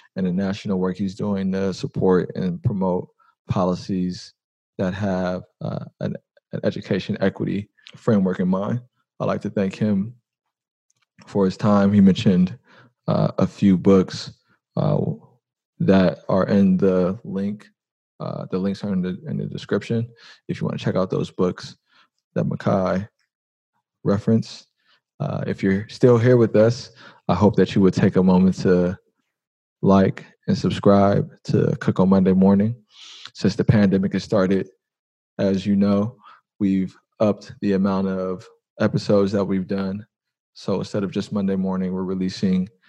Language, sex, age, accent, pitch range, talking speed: English, male, 20-39, American, 95-105 Hz, 155 wpm